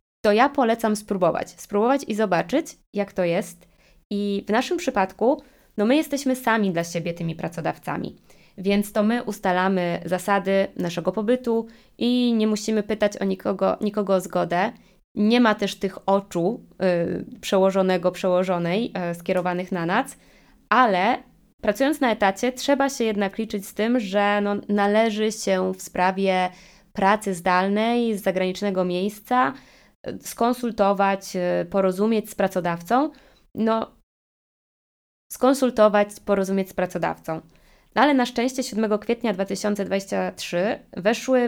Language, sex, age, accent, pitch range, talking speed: Polish, female, 20-39, native, 190-235 Hz, 125 wpm